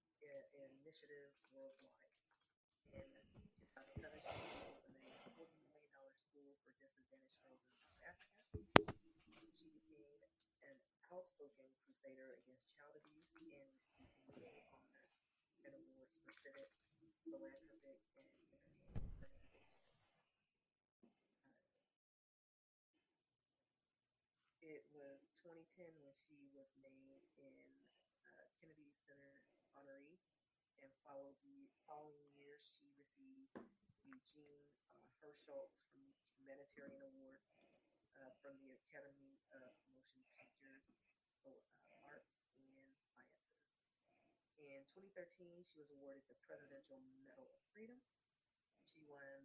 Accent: American